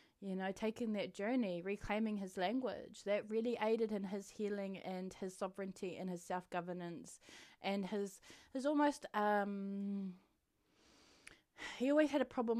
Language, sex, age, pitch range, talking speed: English, female, 20-39, 185-240 Hz, 145 wpm